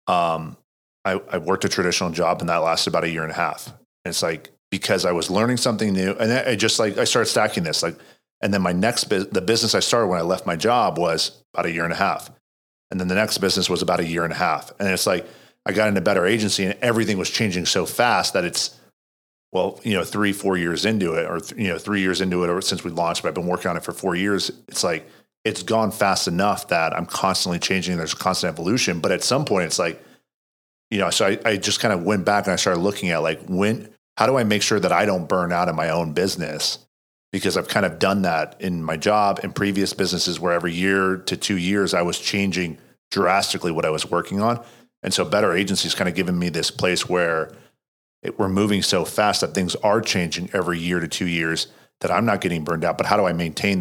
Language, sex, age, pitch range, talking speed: English, male, 40-59, 85-100 Hz, 250 wpm